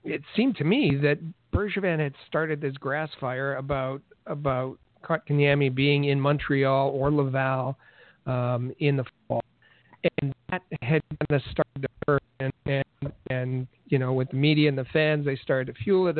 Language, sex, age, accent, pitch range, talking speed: English, male, 50-69, American, 130-155 Hz, 165 wpm